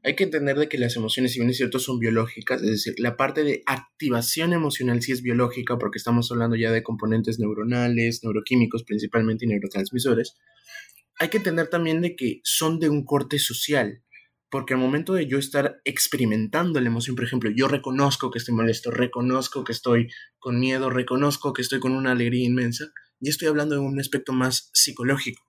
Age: 20-39